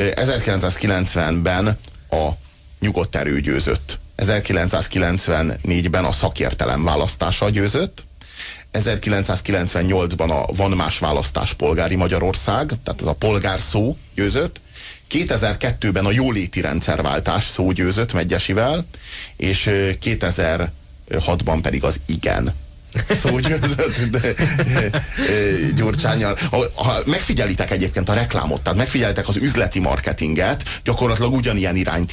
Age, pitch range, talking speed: 30-49, 85-110 Hz, 90 wpm